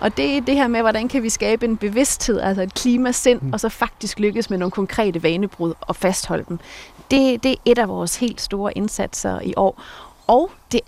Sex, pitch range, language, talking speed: female, 190-225 Hz, Danish, 210 wpm